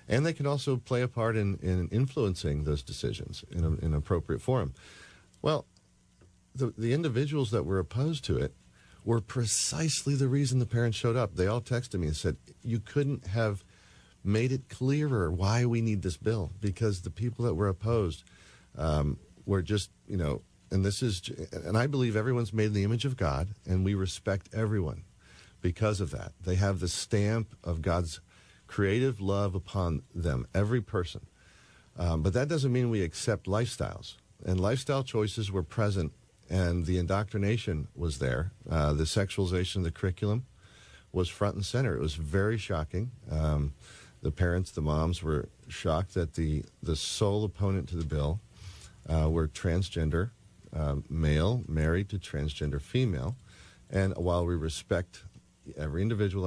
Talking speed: 165 wpm